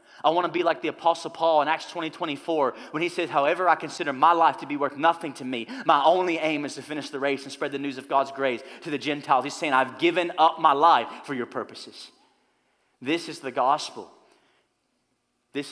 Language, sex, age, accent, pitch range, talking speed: English, male, 30-49, American, 145-195 Hz, 225 wpm